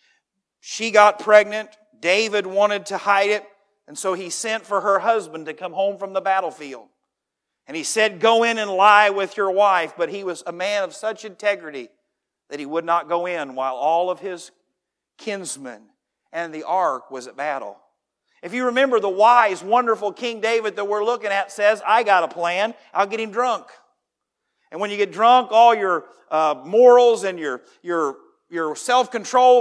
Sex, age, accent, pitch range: male, 50-69, American, 165-220 Hz